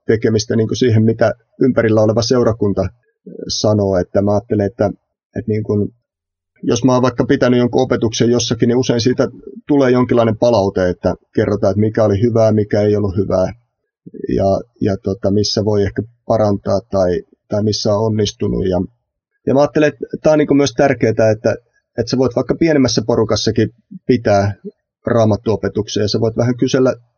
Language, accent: Finnish, native